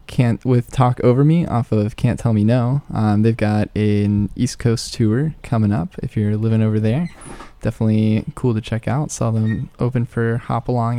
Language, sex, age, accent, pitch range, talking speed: English, male, 10-29, American, 110-130 Hz, 195 wpm